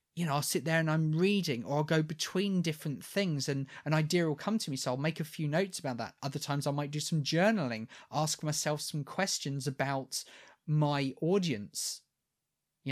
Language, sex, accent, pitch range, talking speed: English, male, British, 135-170 Hz, 205 wpm